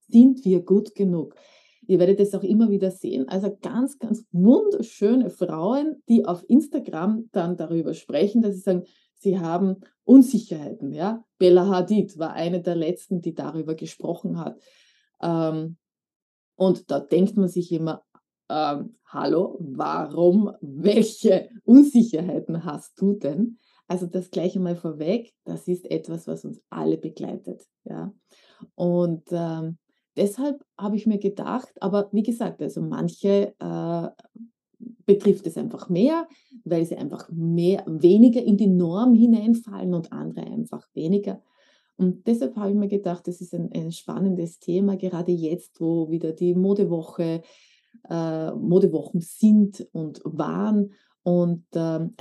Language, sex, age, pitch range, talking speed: German, female, 20-39, 175-220 Hz, 140 wpm